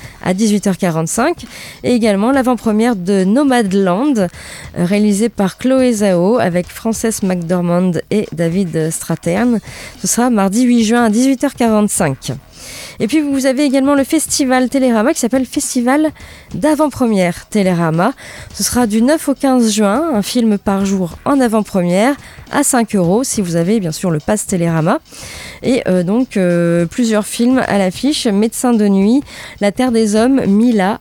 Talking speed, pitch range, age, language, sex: 150 wpm, 190-255 Hz, 20-39, French, female